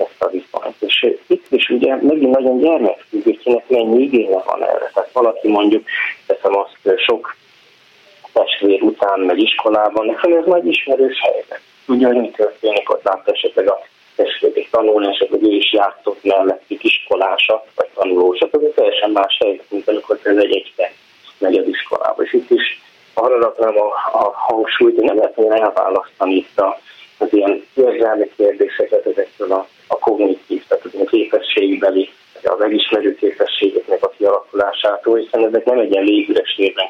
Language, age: Hungarian, 30-49